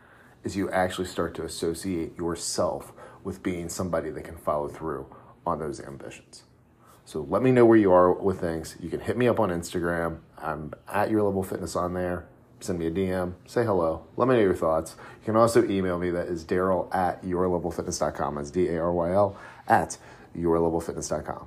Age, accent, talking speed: 40-59, American, 180 wpm